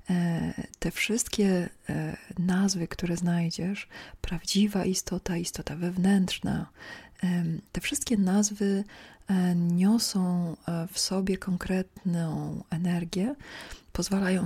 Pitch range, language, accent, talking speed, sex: 170-190 Hz, Polish, native, 75 wpm, female